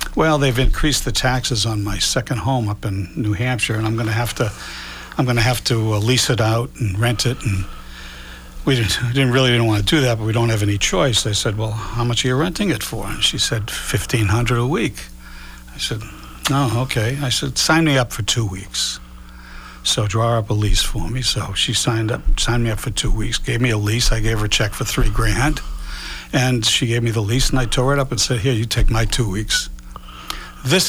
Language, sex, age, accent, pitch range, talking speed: English, male, 60-79, American, 105-130 Hz, 245 wpm